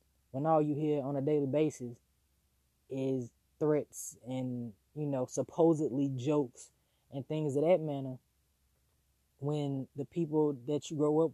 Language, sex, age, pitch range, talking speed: English, female, 20-39, 125-150 Hz, 145 wpm